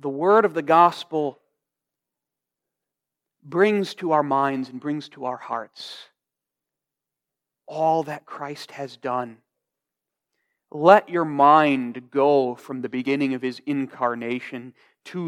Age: 40-59